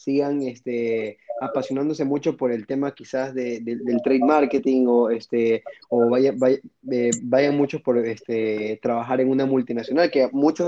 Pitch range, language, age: 125-150 Hz, Spanish, 20-39